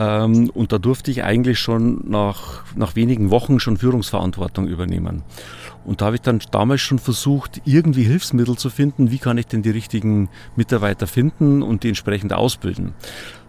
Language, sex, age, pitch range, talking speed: German, male, 40-59, 110-140 Hz, 165 wpm